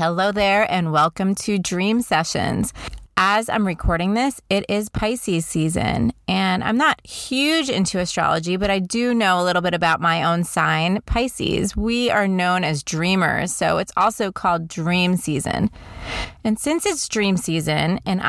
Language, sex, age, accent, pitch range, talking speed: English, female, 30-49, American, 170-220 Hz, 165 wpm